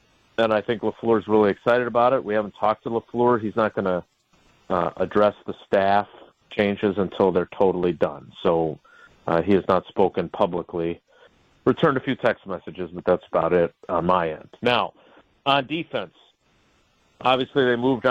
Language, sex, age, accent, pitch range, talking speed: English, male, 40-59, American, 95-115 Hz, 170 wpm